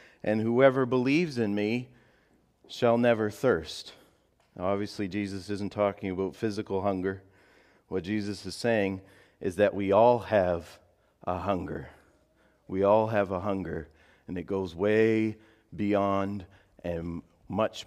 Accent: American